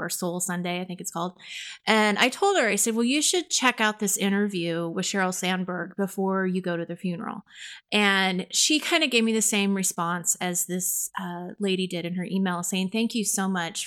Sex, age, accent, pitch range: female, 30-49, American, 180-225 Hz